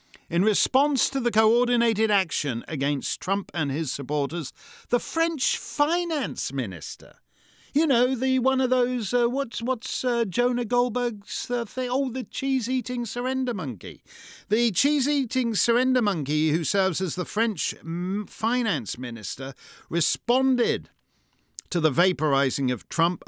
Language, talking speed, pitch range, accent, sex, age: English, 135 wpm, 160-245 Hz, British, male, 50-69